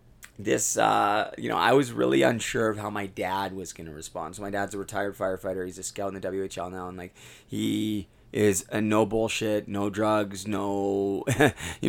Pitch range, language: 100-110 Hz, English